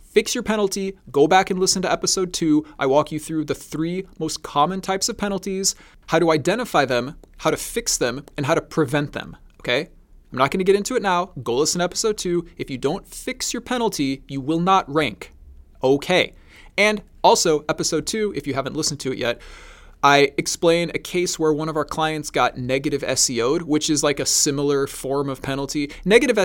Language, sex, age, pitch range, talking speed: English, male, 20-39, 135-190 Hz, 205 wpm